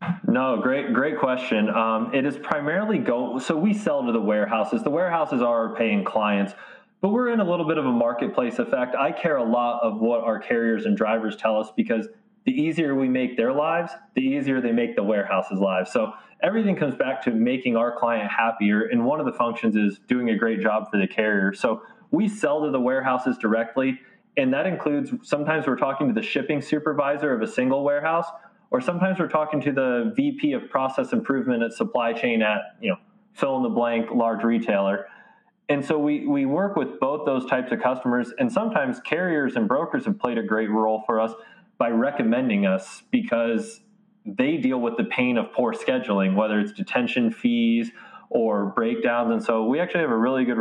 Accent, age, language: American, 20-39, English